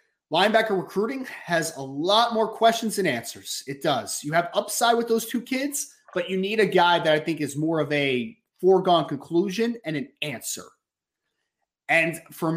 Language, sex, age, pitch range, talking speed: English, male, 30-49, 145-200 Hz, 175 wpm